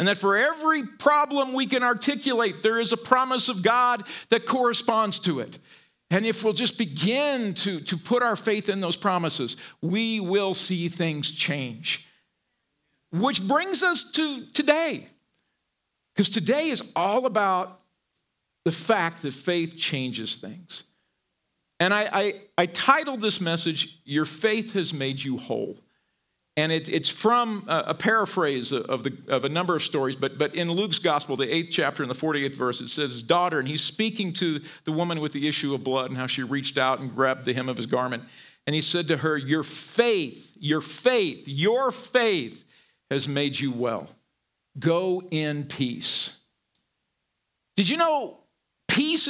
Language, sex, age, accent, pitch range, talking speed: English, male, 50-69, American, 150-240 Hz, 165 wpm